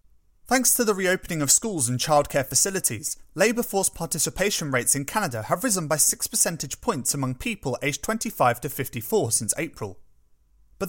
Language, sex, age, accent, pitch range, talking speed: English, male, 30-49, British, 120-200 Hz, 165 wpm